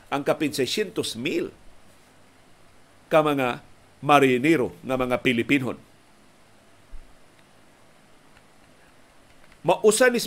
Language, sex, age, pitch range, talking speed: Filipino, male, 50-69, 135-175 Hz, 70 wpm